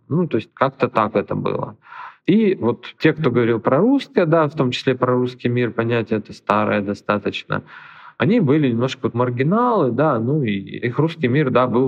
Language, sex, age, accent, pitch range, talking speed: Russian, male, 40-59, native, 110-150 Hz, 190 wpm